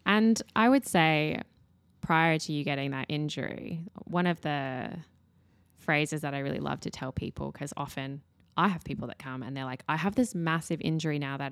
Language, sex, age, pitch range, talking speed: English, female, 10-29, 140-170 Hz, 200 wpm